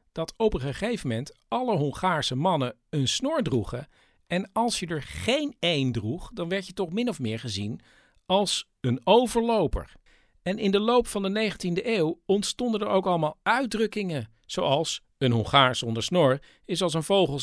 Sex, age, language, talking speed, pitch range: male, 50-69, Dutch, 175 wpm, 135-200 Hz